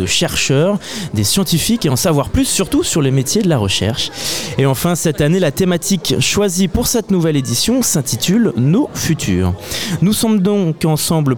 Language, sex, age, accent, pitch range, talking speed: French, male, 20-39, French, 130-190 Hz, 175 wpm